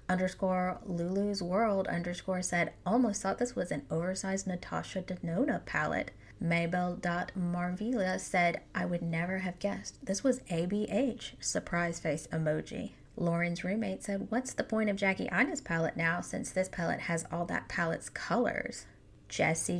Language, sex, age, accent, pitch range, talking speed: English, female, 20-39, American, 175-205 Hz, 140 wpm